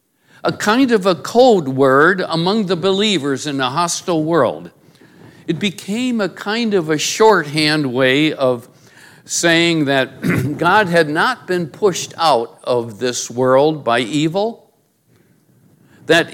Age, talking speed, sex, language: 60-79, 130 wpm, male, English